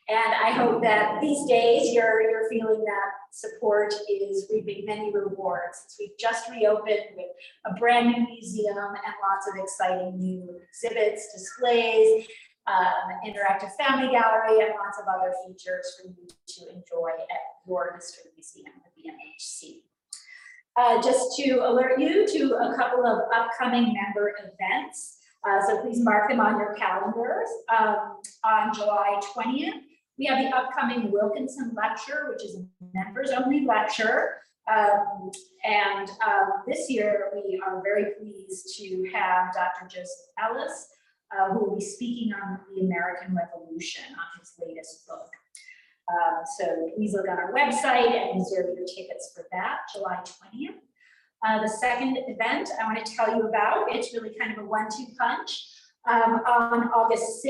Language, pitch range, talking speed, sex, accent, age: English, 200-255 Hz, 155 wpm, female, American, 30-49